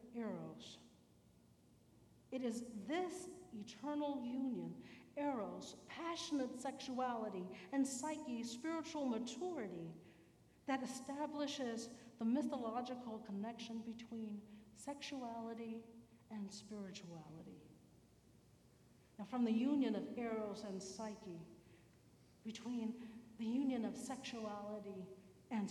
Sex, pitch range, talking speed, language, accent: female, 205-250 Hz, 85 wpm, Spanish, American